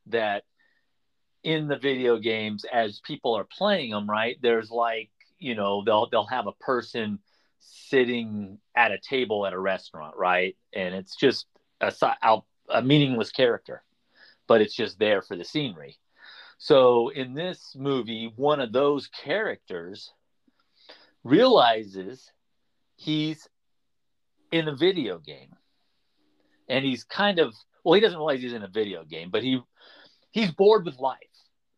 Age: 40-59